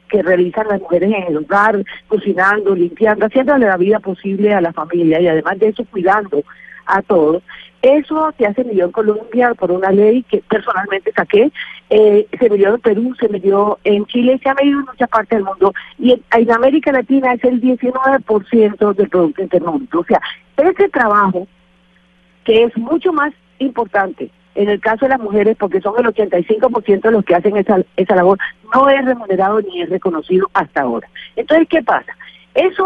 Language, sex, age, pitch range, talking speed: Spanish, female, 40-59, 195-255 Hz, 185 wpm